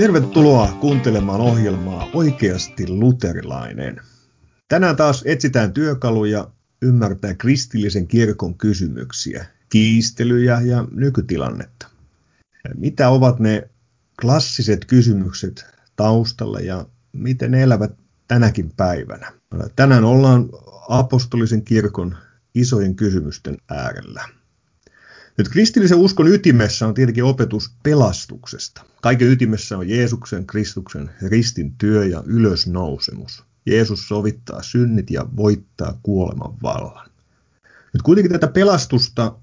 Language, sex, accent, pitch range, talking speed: Finnish, male, native, 100-125 Hz, 95 wpm